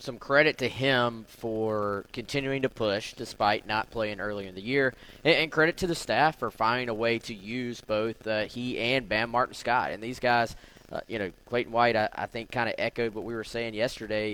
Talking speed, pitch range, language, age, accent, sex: 220 wpm, 110-130 Hz, English, 20-39, American, male